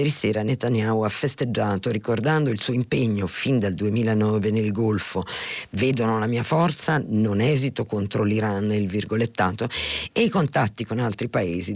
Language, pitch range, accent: Italian, 105-135 Hz, native